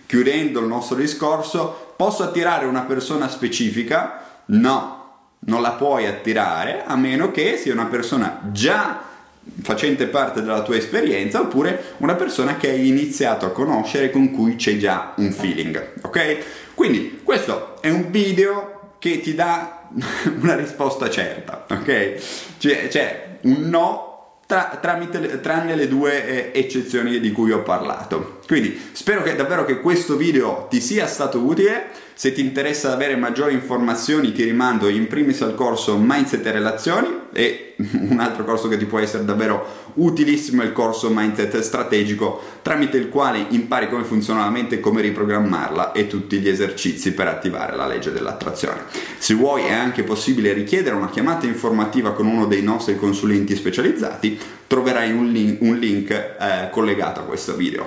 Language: Italian